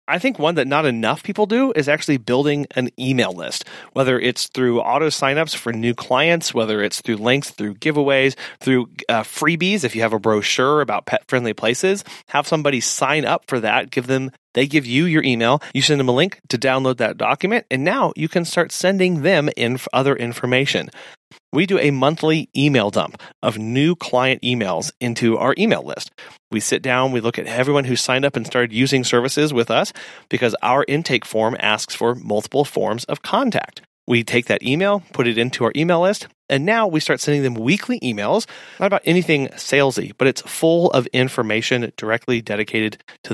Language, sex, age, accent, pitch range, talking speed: English, male, 30-49, American, 120-150 Hz, 195 wpm